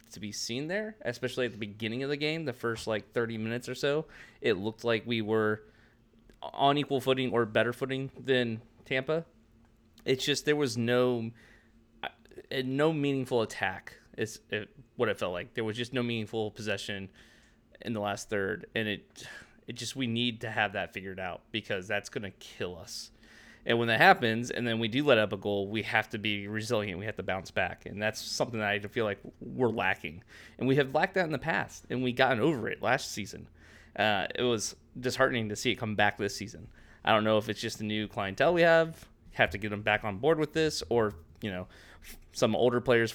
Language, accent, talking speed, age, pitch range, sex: English, American, 215 wpm, 20-39, 105-125 Hz, male